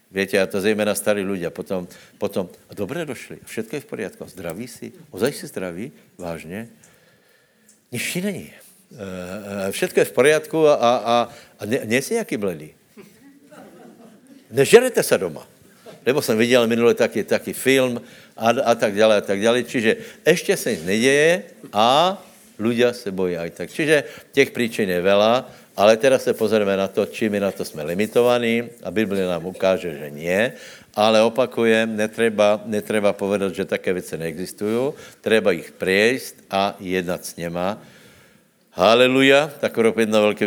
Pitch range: 100-130 Hz